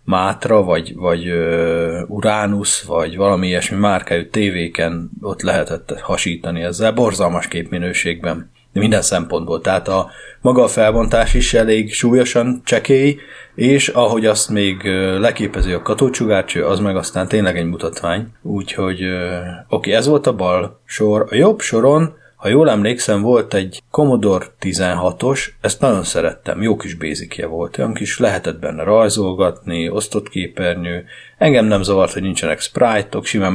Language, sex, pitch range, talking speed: Hungarian, male, 90-110 Hz, 135 wpm